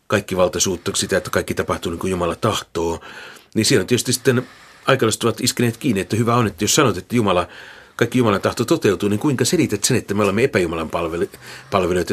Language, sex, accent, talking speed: Finnish, male, native, 195 wpm